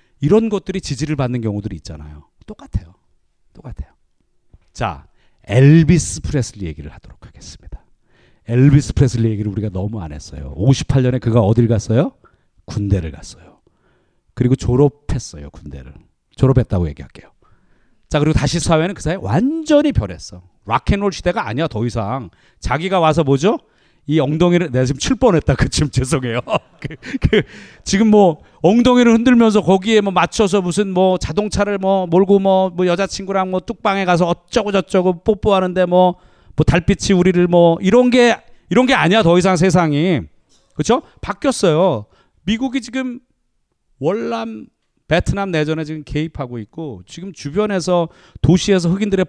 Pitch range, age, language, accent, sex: 120-195 Hz, 40-59, Korean, native, male